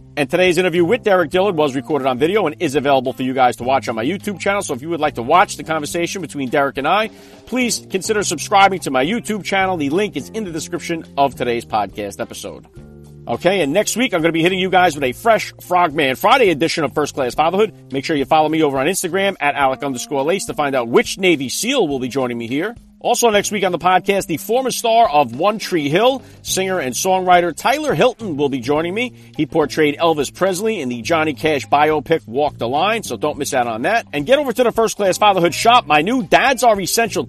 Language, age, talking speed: English, 40-59, 240 wpm